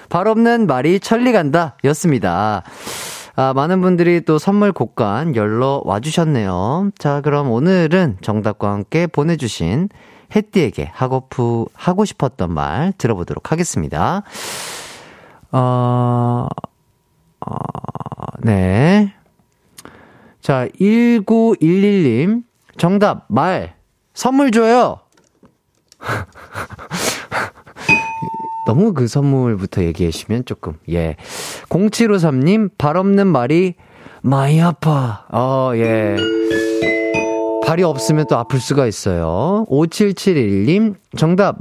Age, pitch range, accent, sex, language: 40-59, 110-185 Hz, native, male, Korean